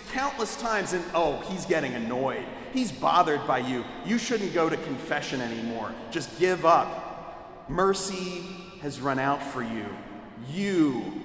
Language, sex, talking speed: English, male, 145 wpm